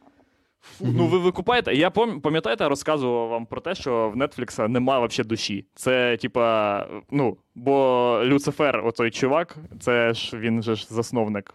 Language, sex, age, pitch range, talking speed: Ukrainian, male, 20-39, 115-160 Hz, 150 wpm